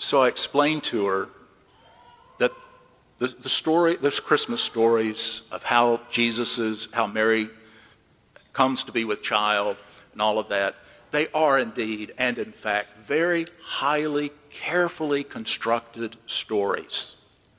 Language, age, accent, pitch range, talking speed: English, 50-69, American, 110-185 Hz, 130 wpm